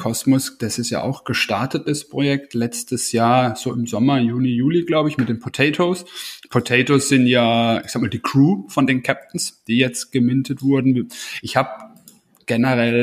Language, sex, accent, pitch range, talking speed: German, male, German, 115-135 Hz, 175 wpm